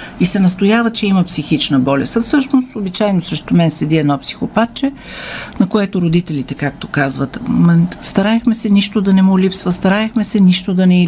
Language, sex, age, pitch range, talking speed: Bulgarian, female, 50-69, 145-195 Hz, 175 wpm